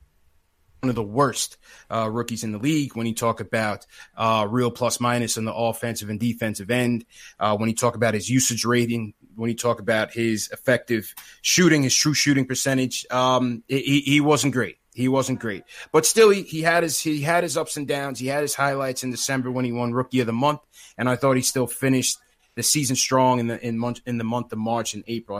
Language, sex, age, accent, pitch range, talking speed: English, male, 20-39, American, 115-135 Hz, 225 wpm